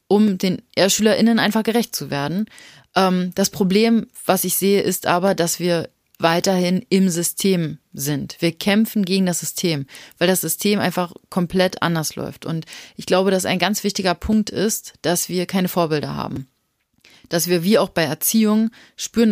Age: 30-49